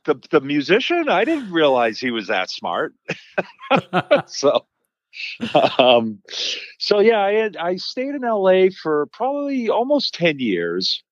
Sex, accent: male, American